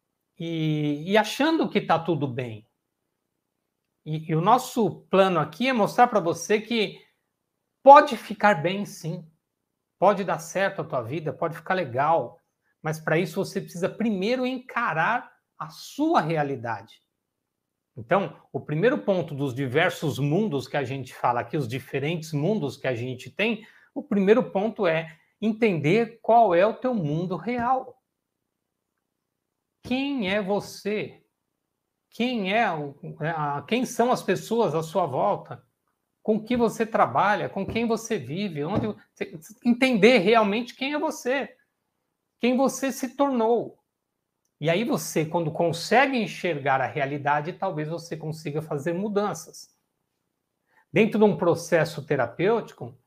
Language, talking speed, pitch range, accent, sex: Portuguese, 130 wpm, 155-225 Hz, Brazilian, male